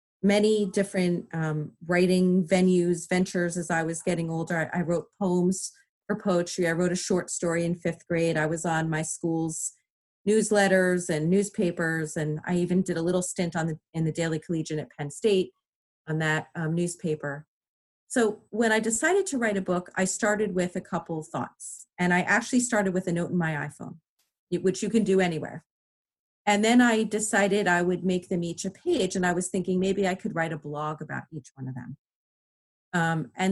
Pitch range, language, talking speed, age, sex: 165-200 Hz, English, 200 wpm, 30-49, female